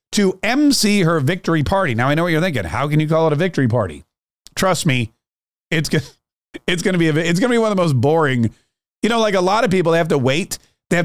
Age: 30-49